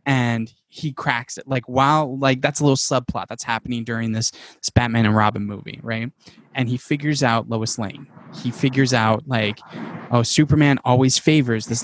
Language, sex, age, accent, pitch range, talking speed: English, male, 10-29, American, 120-150 Hz, 180 wpm